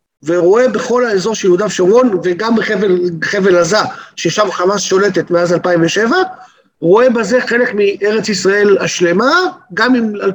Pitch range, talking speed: 190-265 Hz, 135 wpm